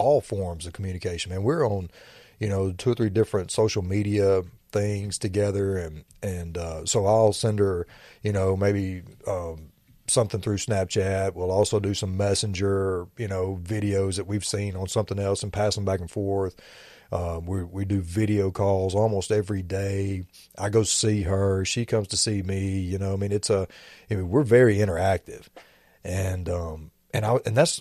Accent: American